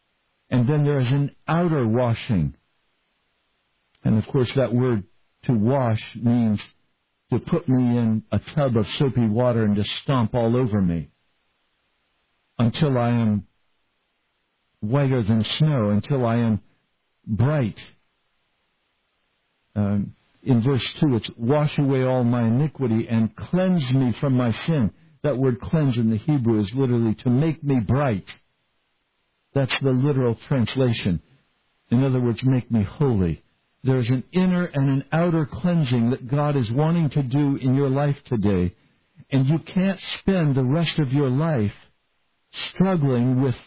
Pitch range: 115-145 Hz